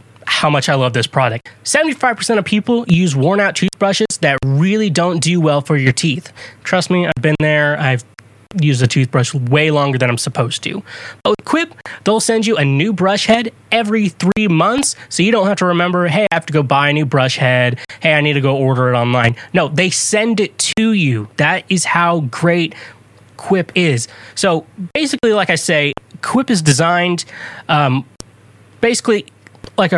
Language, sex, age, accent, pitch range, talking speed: English, male, 20-39, American, 130-180 Hz, 190 wpm